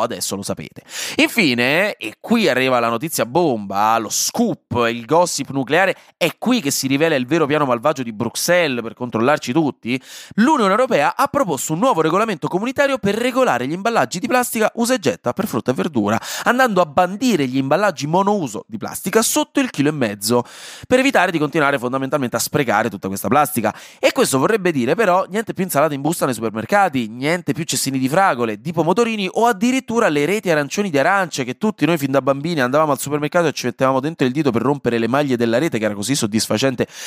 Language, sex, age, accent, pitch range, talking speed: Italian, male, 30-49, native, 125-190 Hz, 200 wpm